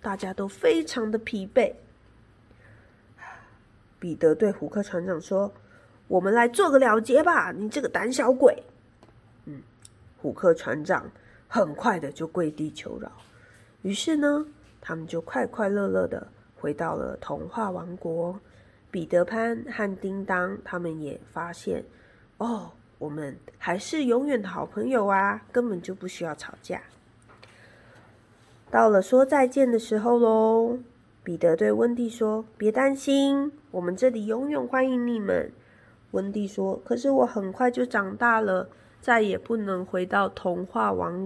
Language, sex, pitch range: Chinese, female, 160-235 Hz